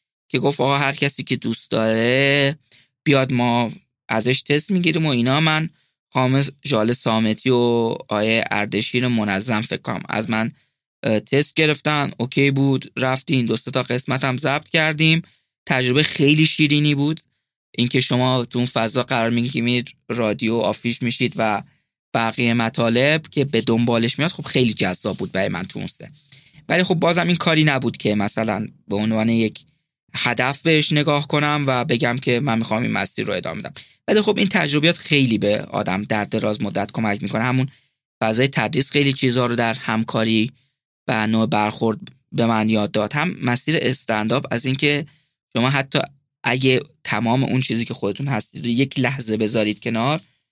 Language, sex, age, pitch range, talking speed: Persian, male, 20-39, 115-140 Hz, 160 wpm